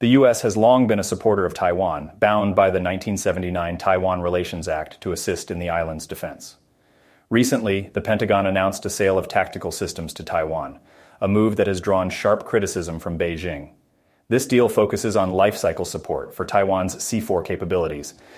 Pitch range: 90-105 Hz